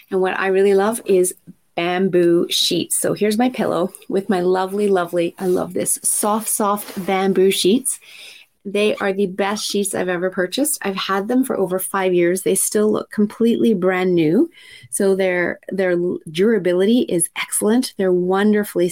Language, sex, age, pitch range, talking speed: English, female, 30-49, 180-210 Hz, 165 wpm